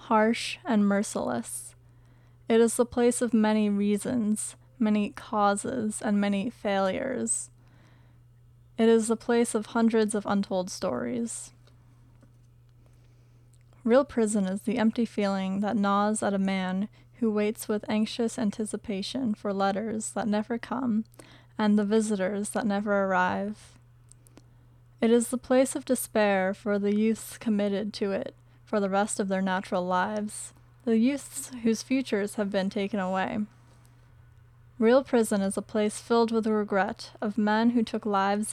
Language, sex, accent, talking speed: English, female, American, 145 wpm